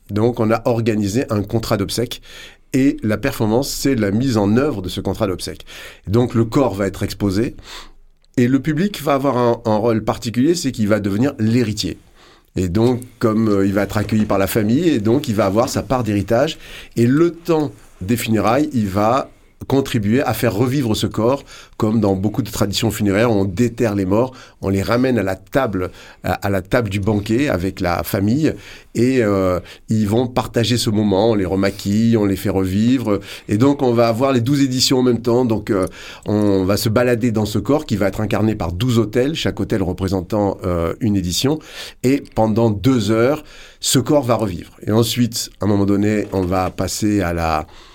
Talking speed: 200 wpm